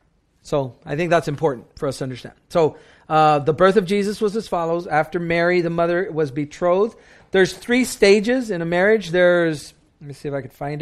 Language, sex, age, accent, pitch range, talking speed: English, male, 40-59, American, 150-200 Hz, 210 wpm